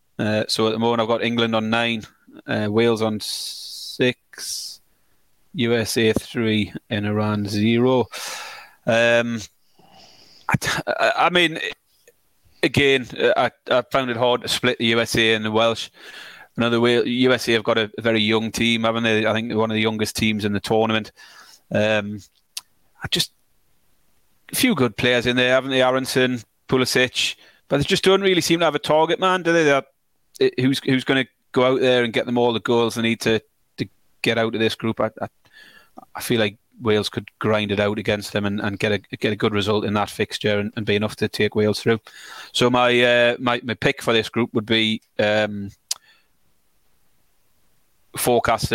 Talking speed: 185 wpm